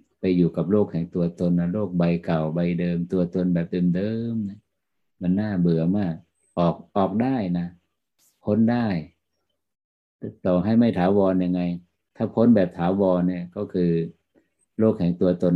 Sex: male